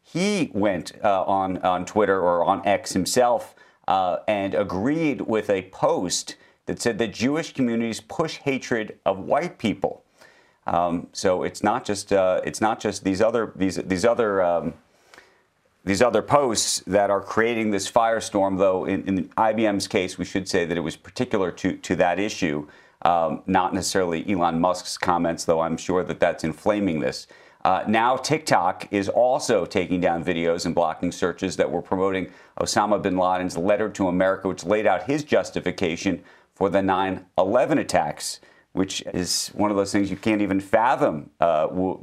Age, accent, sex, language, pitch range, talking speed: 40-59, American, male, English, 90-110 Hz, 170 wpm